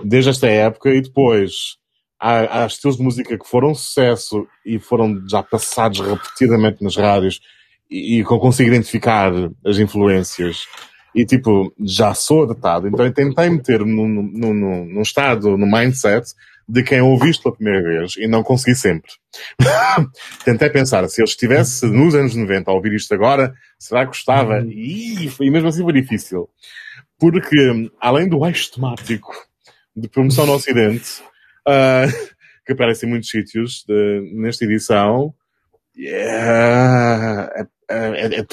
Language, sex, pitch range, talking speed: Portuguese, male, 110-140 Hz, 145 wpm